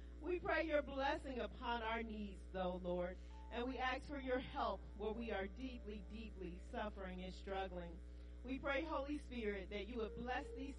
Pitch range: 195-260 Hz